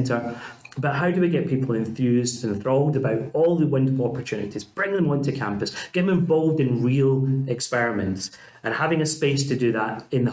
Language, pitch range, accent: English, 115-155 Hz, British